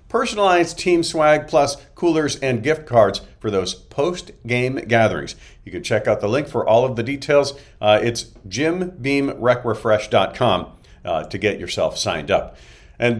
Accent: American